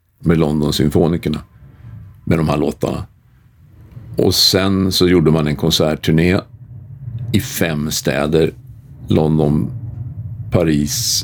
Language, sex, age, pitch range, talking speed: Swedish, male, 50-69, 80-105 Hz, 100 wpm